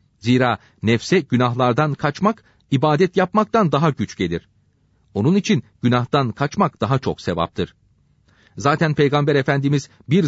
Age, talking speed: 40-59, 115 wpm